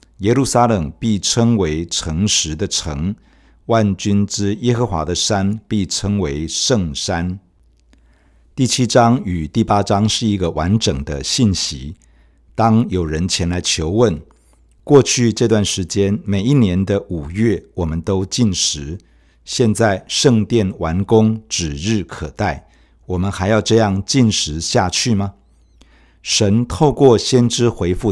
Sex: male